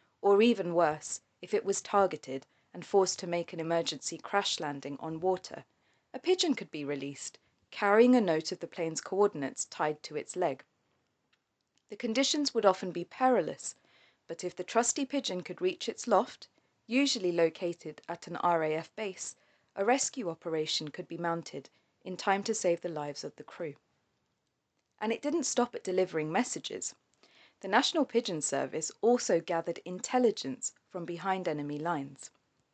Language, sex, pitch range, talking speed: English, female, 165-230 Hz, 160 wpm